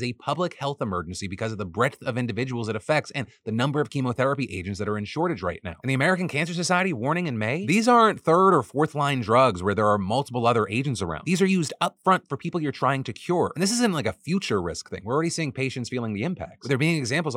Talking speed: 265 wpm